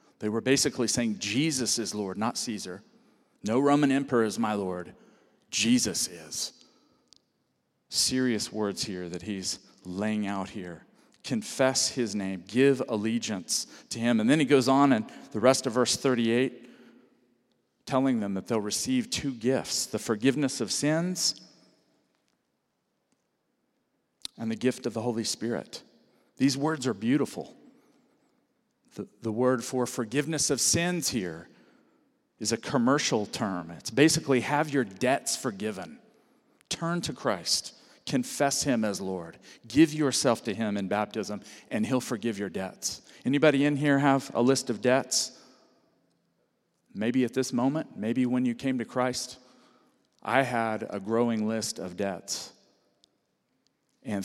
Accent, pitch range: American, 110-135 Hz